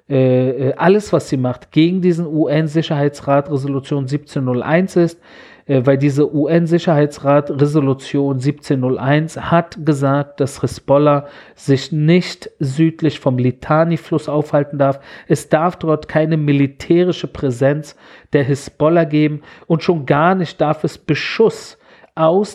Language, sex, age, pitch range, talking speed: German, male, 40-59, 140-170 Hz, 115 wpm